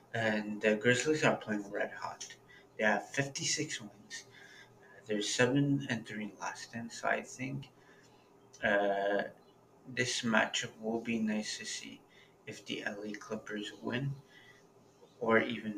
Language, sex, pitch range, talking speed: English, male, 110-135 Hz, 135 wpm